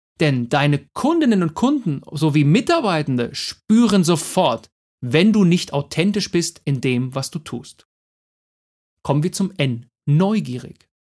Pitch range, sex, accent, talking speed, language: 130-190 Hz, male, German, 130 wpm, German